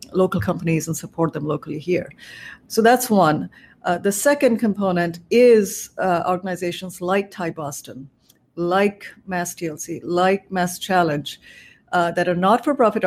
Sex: female